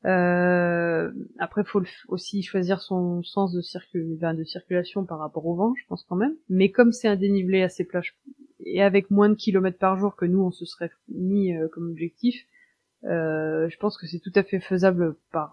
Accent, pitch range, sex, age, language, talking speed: French, 170-215 Hz, female, 20-39, French, 210 wpm